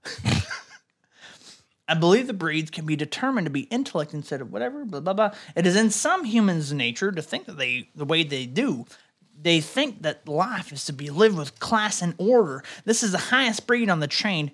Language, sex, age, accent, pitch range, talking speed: English, male, 30-49, American, 150-195 Hz, 205 wpm